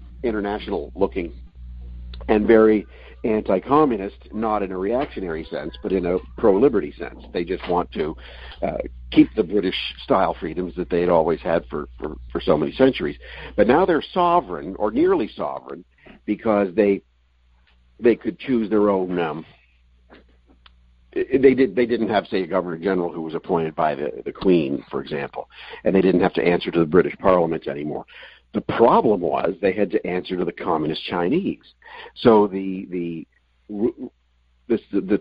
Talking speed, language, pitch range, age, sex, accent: 160 wpm, English, 80-110 Hz, 60-79, male, American